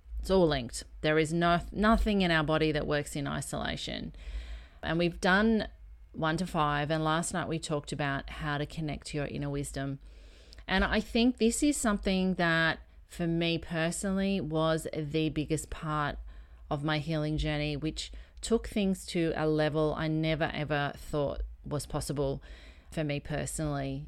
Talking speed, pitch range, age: 160 wpm, 140-165 Hz, 30-49